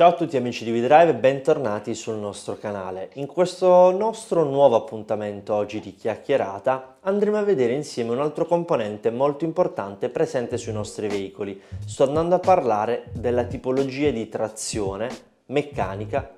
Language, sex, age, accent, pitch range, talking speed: Italian, male, 20-39, native, 105-155 Hz, 145 wpm